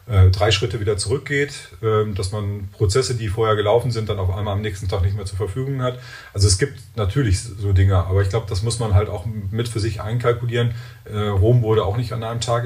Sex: male